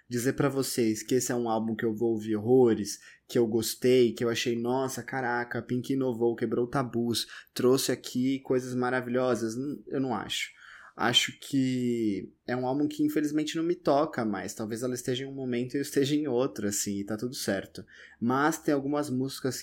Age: 20-39